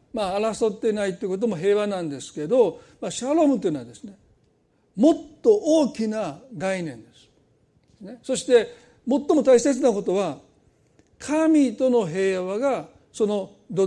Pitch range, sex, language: 170-270 Hz, male, Japanese